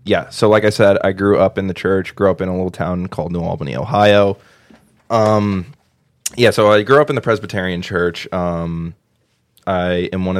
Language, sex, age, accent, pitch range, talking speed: English, male, 20-39, American, 90-110 Hz, 200 wpm